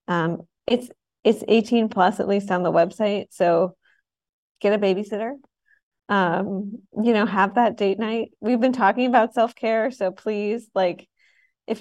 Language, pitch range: English, 180-220 Hz